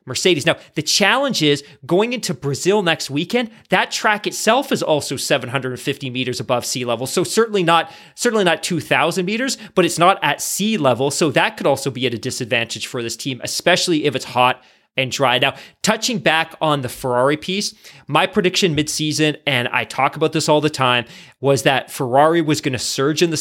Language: English